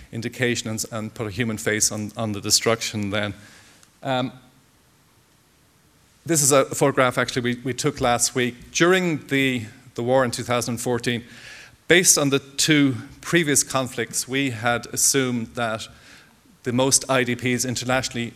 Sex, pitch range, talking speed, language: male, 110-130 Hz, 135 wpm, English